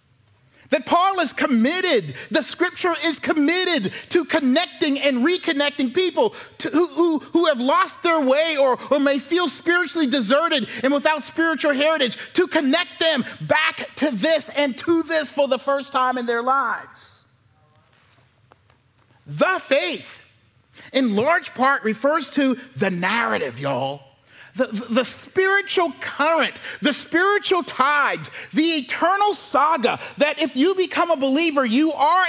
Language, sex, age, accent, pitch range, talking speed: English, male, 40-59, American, 255-345 Hz, 135 wpm